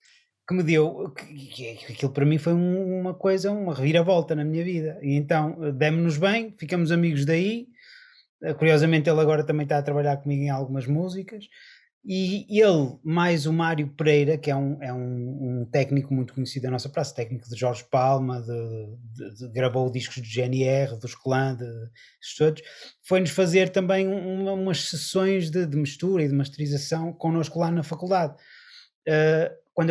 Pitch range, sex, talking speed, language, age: 135-175 Hz, male, 155 wpm, Portuguese, 20-39